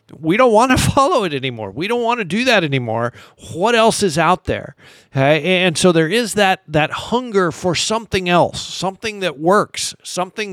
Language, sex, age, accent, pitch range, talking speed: English, male, 50-69, American, 150-185 Hz, 195 wpm